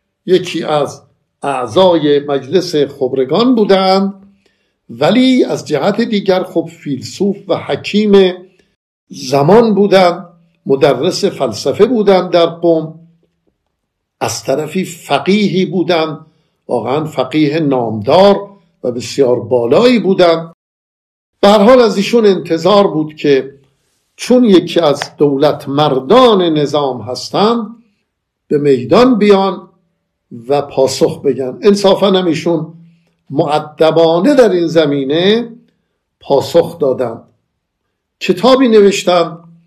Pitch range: 145-195 Hz